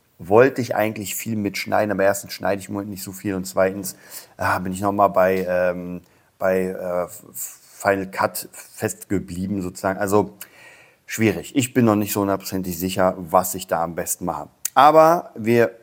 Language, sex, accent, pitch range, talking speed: German, male, German, 95-110 Hz, 160 wpm